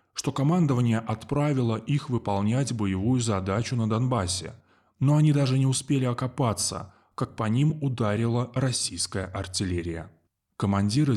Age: 20-39